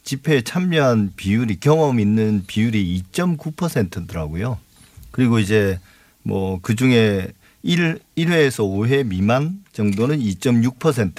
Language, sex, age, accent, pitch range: Korean, male, 40-59, native, 100-140 Hz